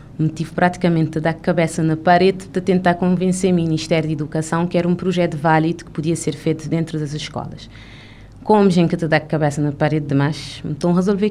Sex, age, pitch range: female, 20-39, 150-185 Hz